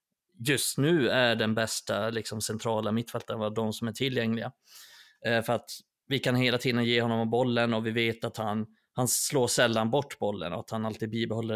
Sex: male